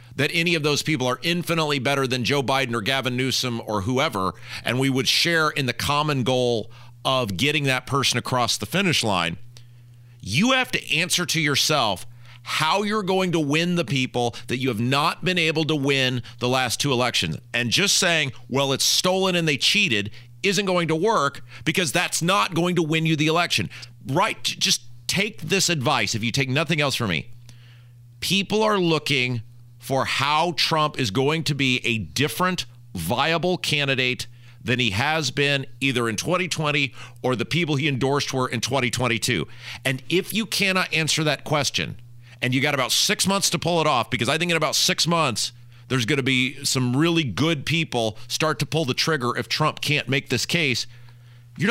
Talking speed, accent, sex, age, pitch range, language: 190 wpm, American, male, 40-59, 120-165 Hz, English